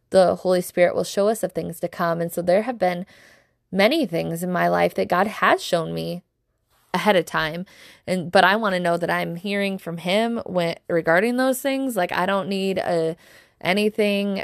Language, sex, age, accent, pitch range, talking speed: English, female, 20-39, American, 170-195 Hz, 205 wpm